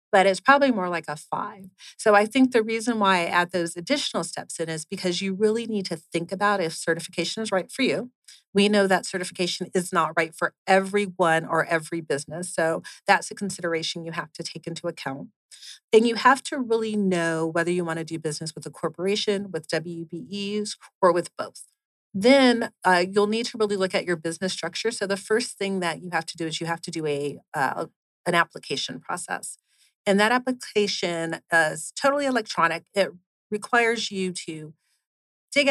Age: 40-59